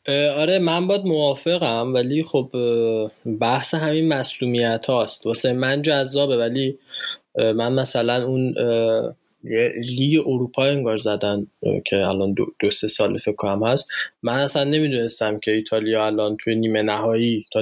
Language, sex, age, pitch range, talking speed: Persian, male, 20-39, 115-145 Hz, 135 wpm